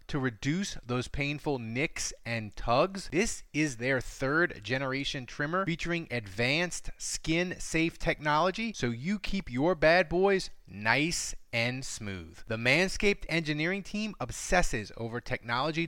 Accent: American